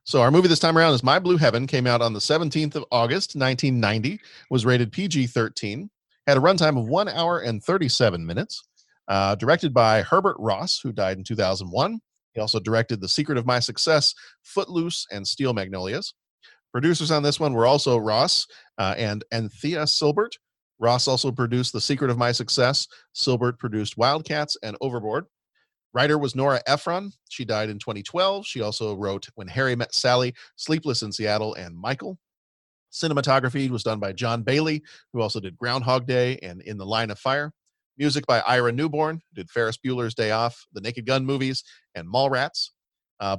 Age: 40-59